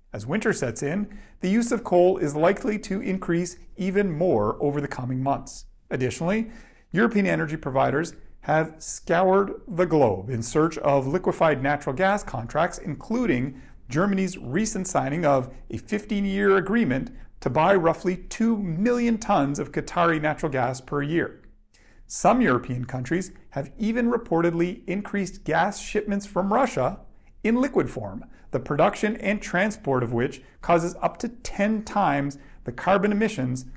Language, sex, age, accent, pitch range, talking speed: English, male, 40-59, American, 145-205 Hz, 145 wpm